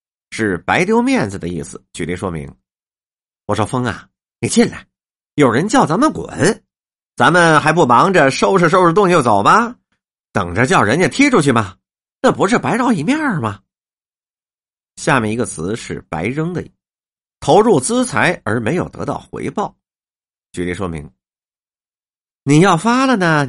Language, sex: Chinese, male